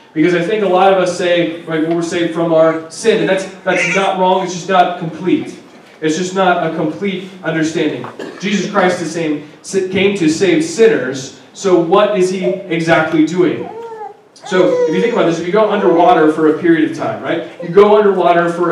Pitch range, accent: 160-195 Hz, American